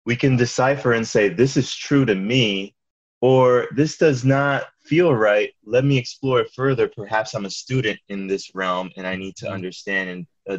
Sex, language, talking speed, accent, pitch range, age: male, English, 195 wpm, American, 95-125 Hz, 20-39